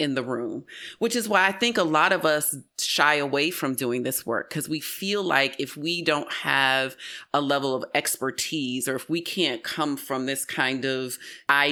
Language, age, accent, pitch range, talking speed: English, 30-49, American, 135-175 Hz, 205 wpm